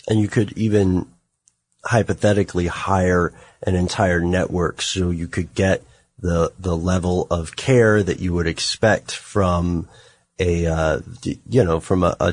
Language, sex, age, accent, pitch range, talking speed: English, male, 30-49, American, 85-105 Hz, 145 wpm